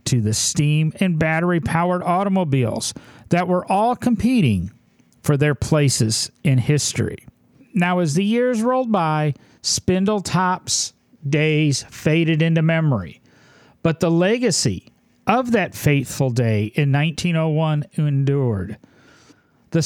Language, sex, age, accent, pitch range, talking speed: English, male, 40-59, American, 125-180 Hz, 110 wpm